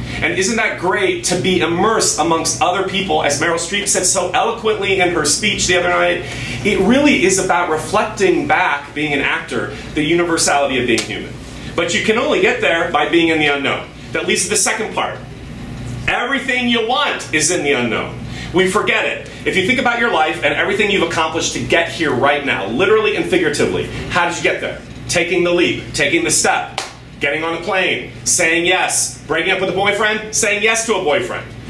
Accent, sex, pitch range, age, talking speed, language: American, male, 160-210 Hz, 30-49, 205 wpm, English